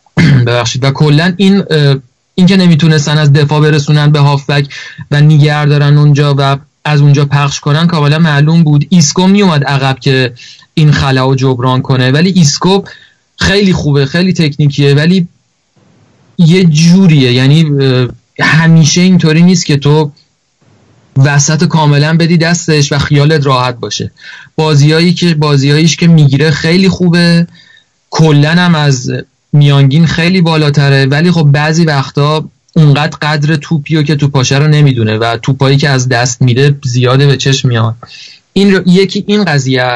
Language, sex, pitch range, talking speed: Persian, male, 135-160 Hz, 145 wpm